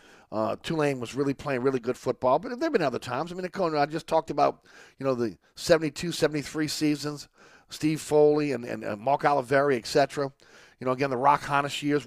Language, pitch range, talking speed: English, 130-150 Hz, 205 wpm